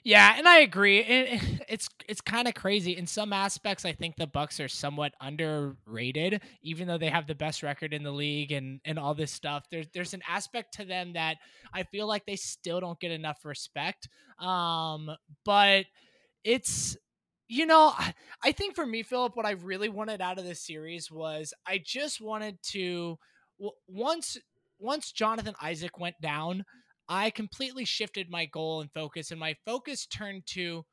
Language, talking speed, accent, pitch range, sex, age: English, 180 wpm, American, 160-215 Hz, male, 20-39